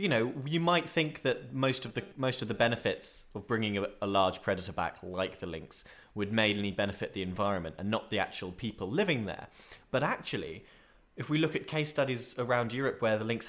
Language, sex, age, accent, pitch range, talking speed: English, male, 20-39, British, 95-125 Hz, 215 wpm